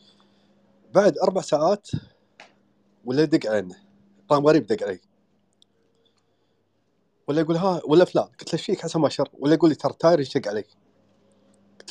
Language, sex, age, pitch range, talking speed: Arabic, male, 30-49, 130-175 Hz, 140 wpm